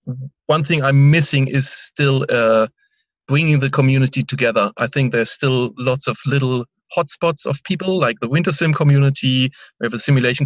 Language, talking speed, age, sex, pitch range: English, 170 wpm, 30-49, male, 125-150 Hz